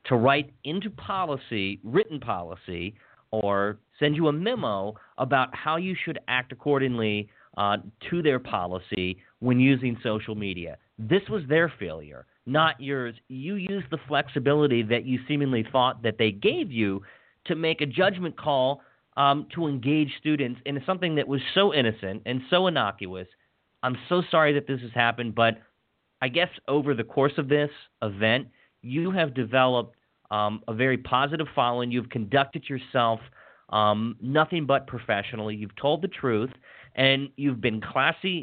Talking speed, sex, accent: 155 wpm, male, American